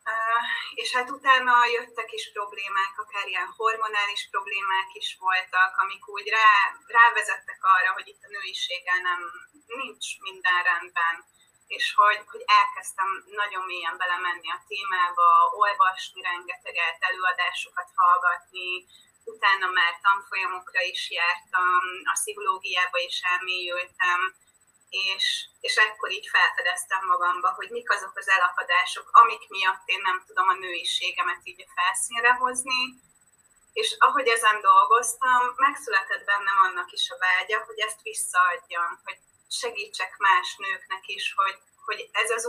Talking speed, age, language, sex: 130 wpm, 30-49, Hungarian, female